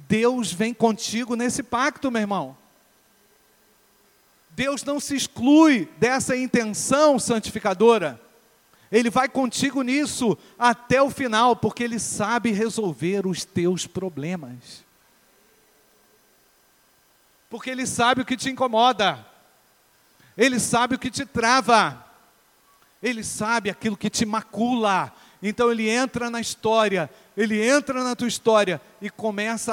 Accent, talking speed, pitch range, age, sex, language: Brazilian, 120 wpm, 205-240 Hz, 40-59, male, Portuguese